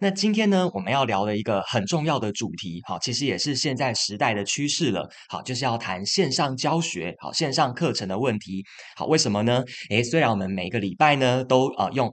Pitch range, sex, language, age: 100-140 Hz, male, Chinese, 20-39